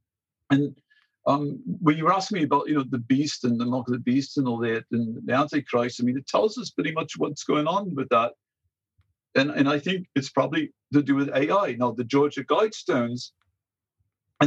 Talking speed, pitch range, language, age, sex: 210 wpm, 125-160 Hz, English, 50-69, male